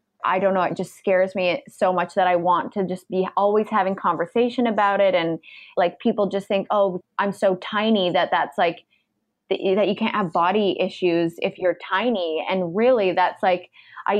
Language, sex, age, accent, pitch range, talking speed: English, female, 20-39, American, 180-205 Hz, 195 wpm